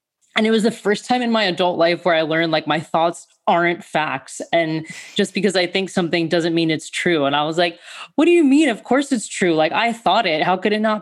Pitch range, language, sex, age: 150-185 Hz, English, female, 20-39